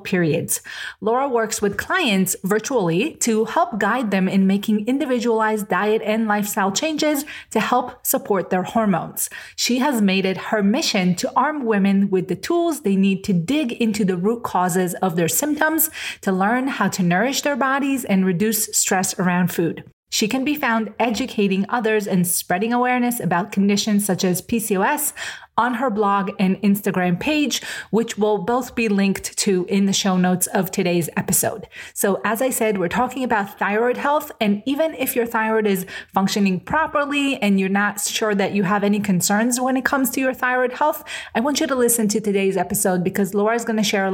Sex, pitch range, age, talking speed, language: female, 195-245 Hz, 30-49, 190 wpm, English